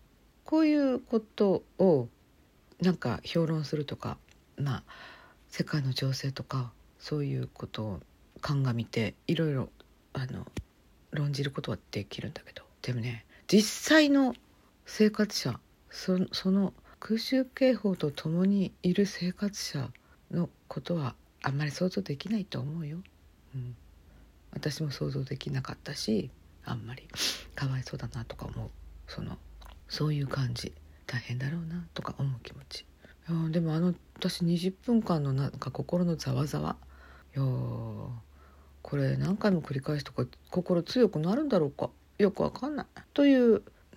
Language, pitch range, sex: Japanese, 125-195 Hz, female